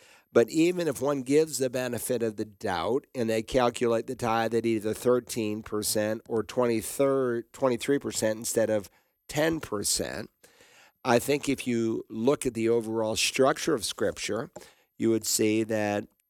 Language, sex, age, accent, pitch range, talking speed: English, male, 50-69, American, 105-120 Hz, 145 wpm